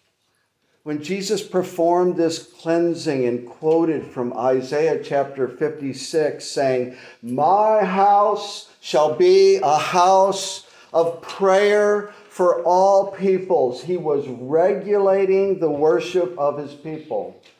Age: 50-69